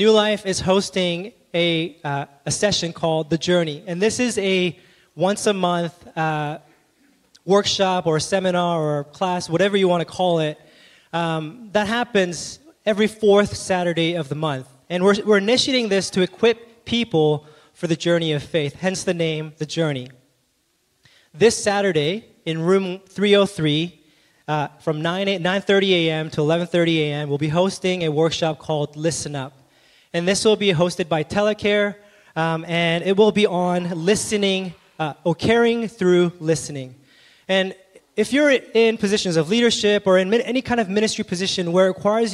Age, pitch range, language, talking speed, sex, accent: 20-39, 160-205 Hz, English, 165 wpm, male, American